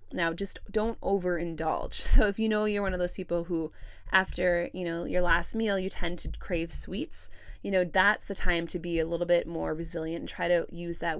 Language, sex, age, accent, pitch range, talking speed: English, female, 20-39, American, 160-200 Hz, 225 wpm